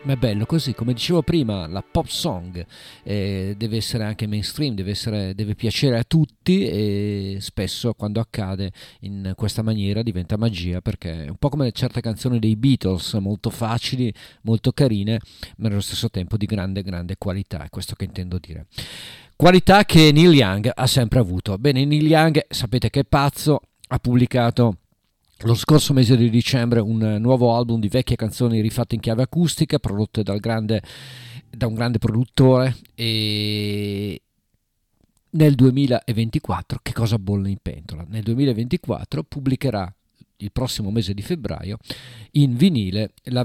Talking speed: 155 wpm